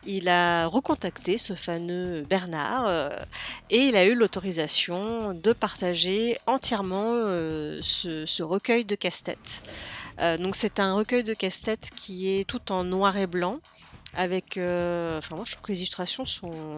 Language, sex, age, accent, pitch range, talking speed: French, female, 40-59, French, 180-220 Hz, 140 wpm